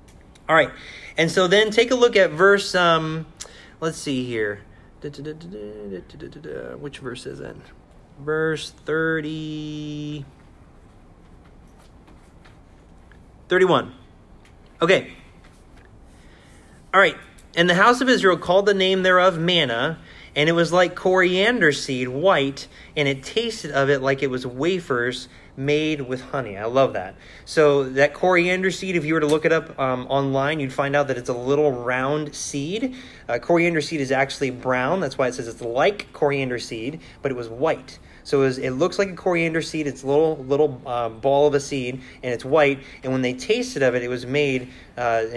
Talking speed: 165 wpm